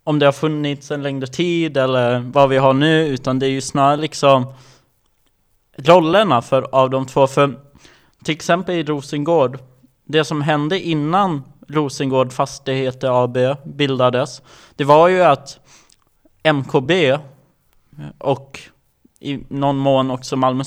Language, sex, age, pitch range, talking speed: Swedish, male, 20-39, 130-155 Hz, 135 wpm